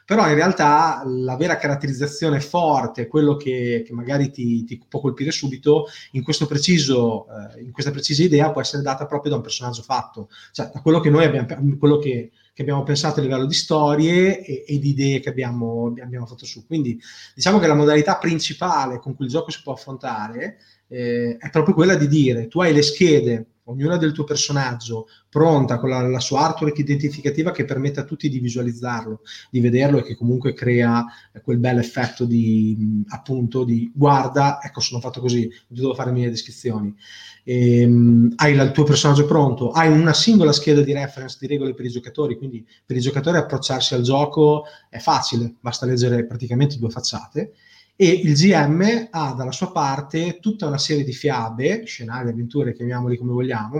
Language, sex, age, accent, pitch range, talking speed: Italian, male, 20-39, native, 120-150 Hz, 185 wpm